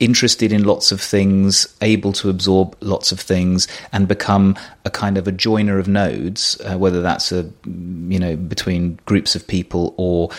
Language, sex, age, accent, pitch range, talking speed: English, male, 30-49, British, 90-100 Hz, 180 wpm